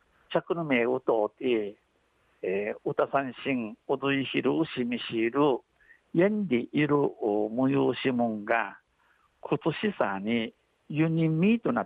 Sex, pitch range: male, 125-170 Hz